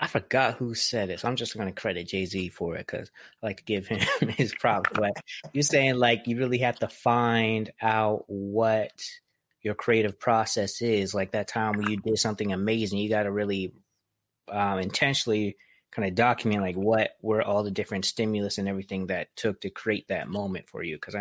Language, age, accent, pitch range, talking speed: English, 20-39, American, 100-115 Hz, 200 wpm